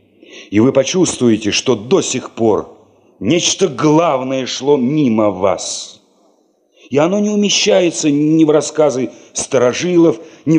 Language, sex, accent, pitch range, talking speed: Russian, male, native, 100-160 Hz, 120 wpm